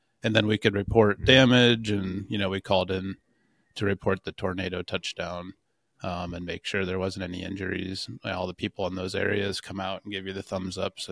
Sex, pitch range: male, 95-110 Hz